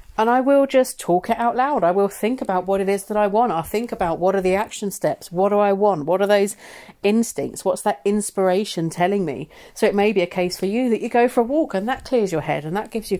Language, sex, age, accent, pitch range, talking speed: English, female, 40-59, British, 170-210 Hz, 280 wpm